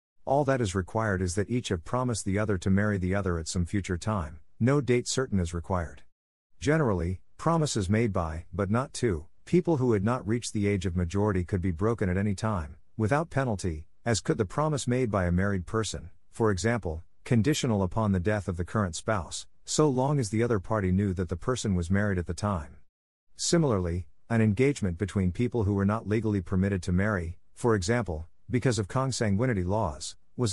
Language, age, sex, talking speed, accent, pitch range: English, 50-69, male, 200 wpm, American, 90-115 Hz